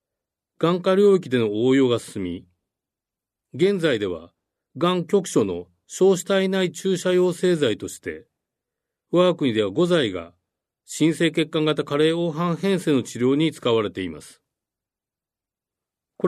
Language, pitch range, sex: Japanese, 110-180 Hz, male